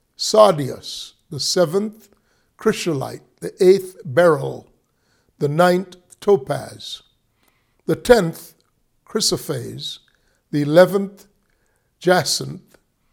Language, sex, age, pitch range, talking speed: English, male, 60-79, 145-200 Hz, 75 wpm